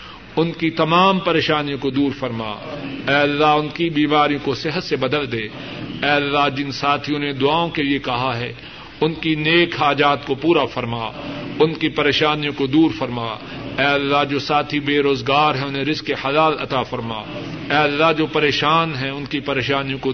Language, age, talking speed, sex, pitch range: Urdu, 50-69, 180 wpm, male, 140-160 Hz